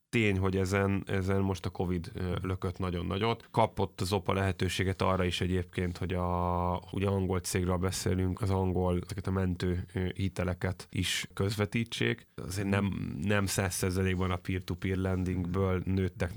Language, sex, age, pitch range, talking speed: Hungarian, male, 10-29, 90-100 Hz, 145 wpm